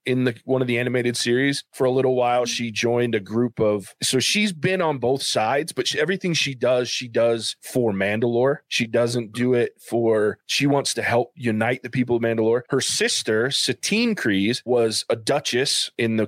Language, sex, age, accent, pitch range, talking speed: English, male, 20-39, American, 110-130 Hz, 195 wpm